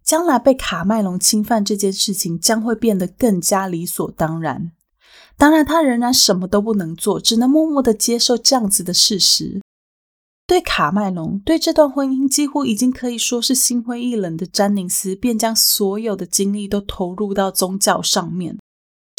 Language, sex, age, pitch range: Chinese, female, 20-39, 190-240 Hz